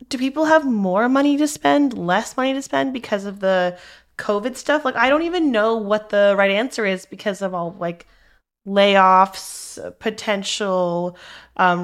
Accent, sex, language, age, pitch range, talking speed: American, female, English, 20-39, 190-245 Hz, 165 wpm